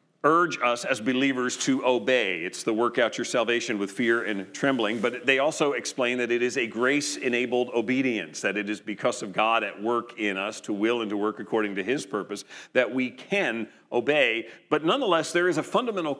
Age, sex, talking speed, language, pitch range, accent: 40-59, male, 205 wpm, English, 120-155 Hz, American